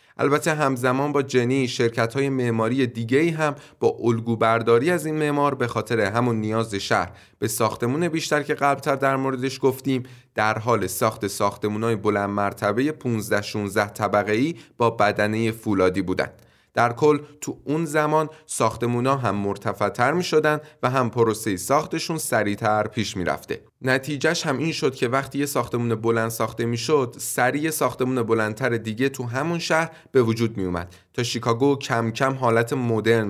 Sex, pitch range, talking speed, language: male, 110-145 Hz, 155 wpm, Persian